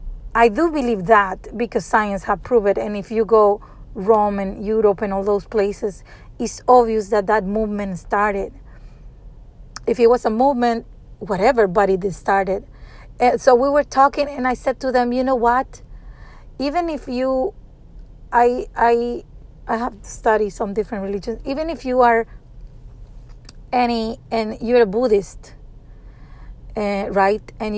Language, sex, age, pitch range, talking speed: English, female, 30-49, 200-235 Hz, 155 wpm